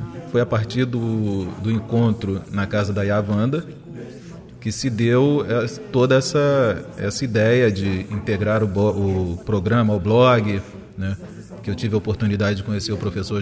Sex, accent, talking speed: male, Brazilian, 150 wpm